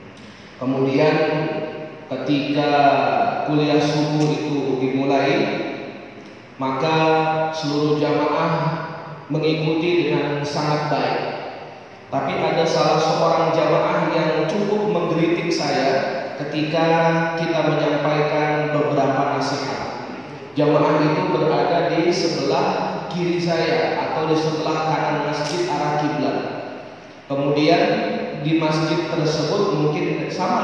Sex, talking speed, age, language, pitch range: male, 90 wpm, 30-49, Indonesian, 145-170 Hz